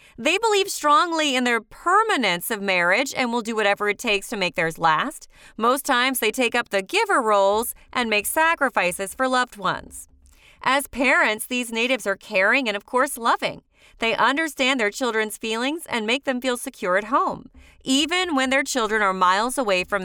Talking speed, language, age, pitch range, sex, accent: 185 wpm, English, 30-49, 200-280 Hz, female, American